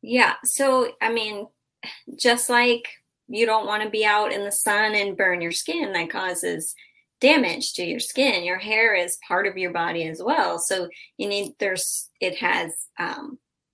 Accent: American